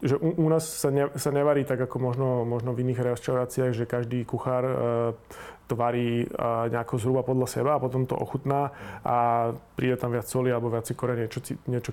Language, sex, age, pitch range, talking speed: Slovak, male, 30-49, 120-135 Hz, 200 wpm